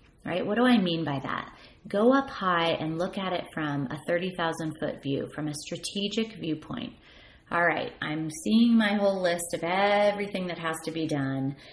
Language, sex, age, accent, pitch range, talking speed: English, female, 30-49, American, 155-200 Hz, 195 wpm